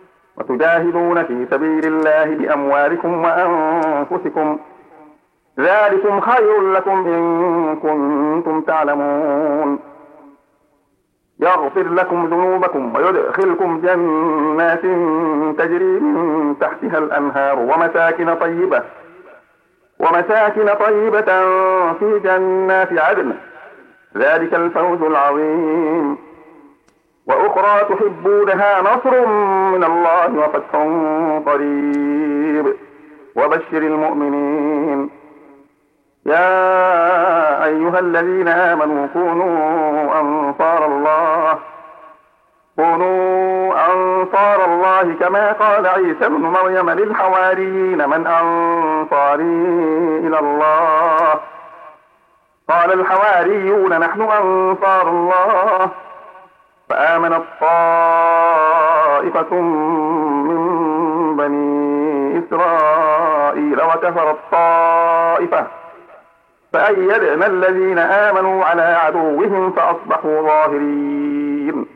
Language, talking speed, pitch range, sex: Arabic, 65 wpm, 155-185 Hz, male